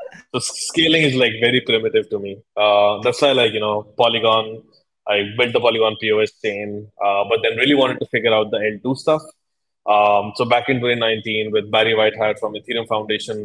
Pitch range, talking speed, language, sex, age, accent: 105-125 Hz, 190 wpm, English, male, 20-39, Indian